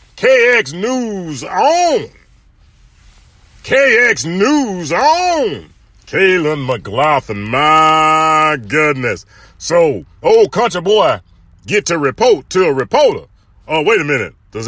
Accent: American